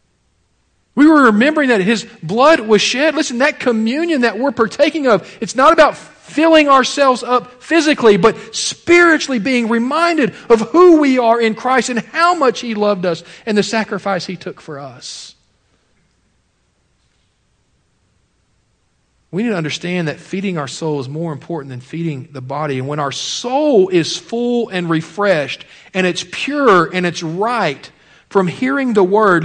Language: English